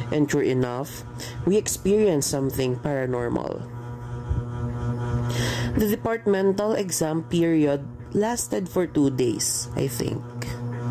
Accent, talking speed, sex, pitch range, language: Filipino, 100 wpm, female, 120-180 Hz, English